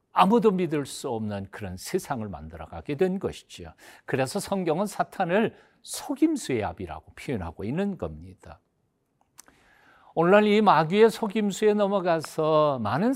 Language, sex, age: Korean, male, 50-69